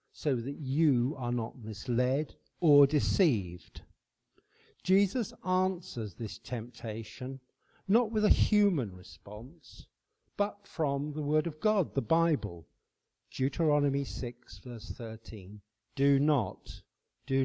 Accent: British